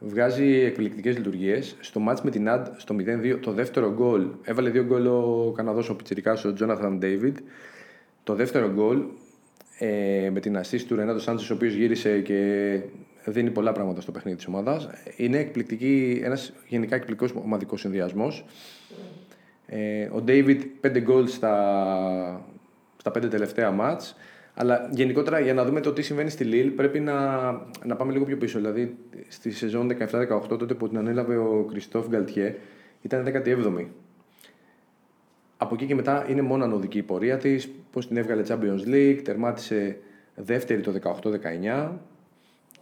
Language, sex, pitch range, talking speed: Greek, male, 105-130 Hz, 155 wpm